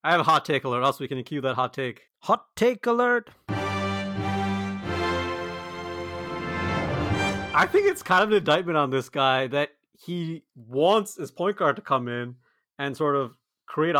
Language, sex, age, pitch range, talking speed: English, male, 30-49, 130-175 Hz, 165 wpm